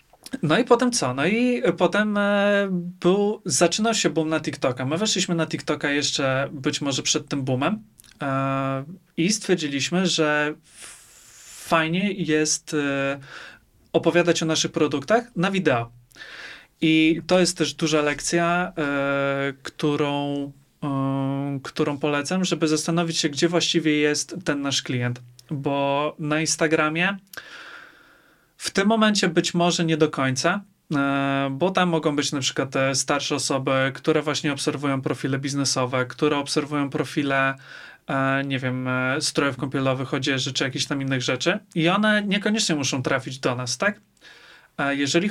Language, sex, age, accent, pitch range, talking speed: Polish, male, 30-49, native, 135-170 Hz, 130 wpm